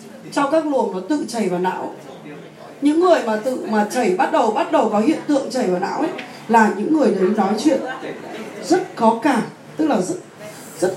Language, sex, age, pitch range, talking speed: Vietnamese, female, 20-39, 195-295 Hz, 200 wpm